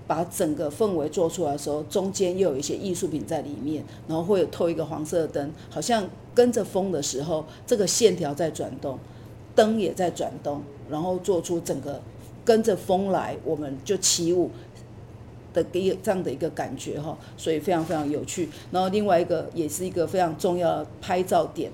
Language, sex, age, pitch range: Chinese, female, 50-69, 155-205 Hz